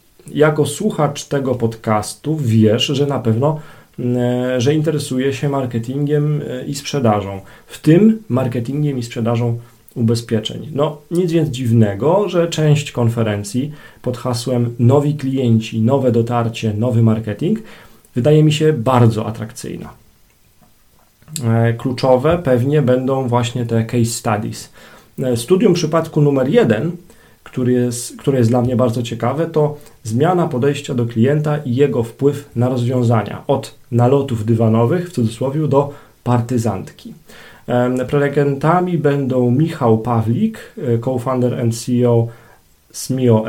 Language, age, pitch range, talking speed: Polish, 40-59, 115-145 Hz, 115 wpm